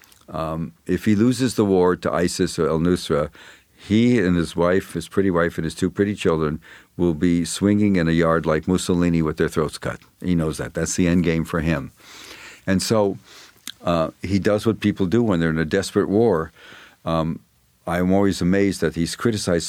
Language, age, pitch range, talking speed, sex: English, 50-69, 80-100 Hz, 195 wpm, male